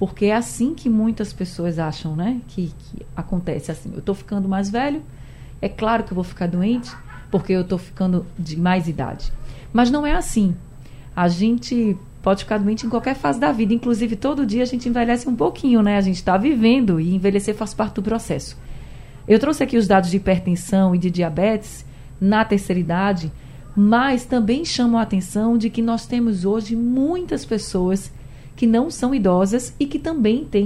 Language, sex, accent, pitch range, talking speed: Portuguese, female, Brazilian, 175-235 Hz, 190 wpm